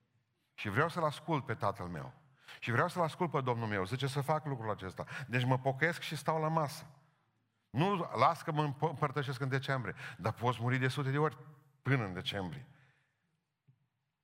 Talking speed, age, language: 180 wpm, 50-69, Romanian